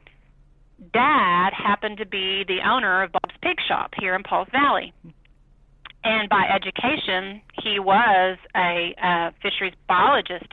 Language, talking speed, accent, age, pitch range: English, 130 wpm, American, 40-59, 185-220 Hz